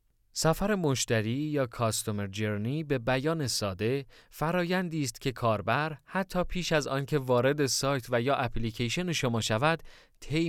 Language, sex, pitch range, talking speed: Persian, male, 120-150 Hz, 135 wpm